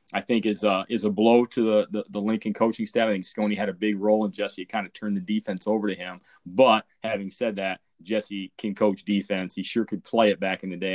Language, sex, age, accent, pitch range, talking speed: English, male, 30-49, American, 100-115 Hz, 270 wpm